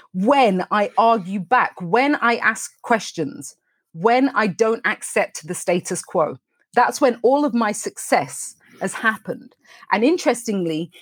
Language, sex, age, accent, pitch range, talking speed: English, female, 30-49, British, 185-255 Hz, 135 wpm